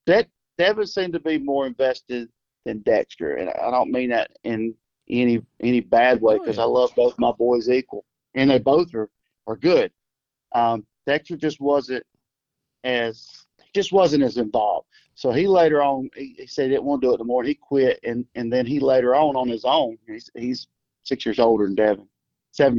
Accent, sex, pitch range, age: American, male, 120-145 Hz, 50-69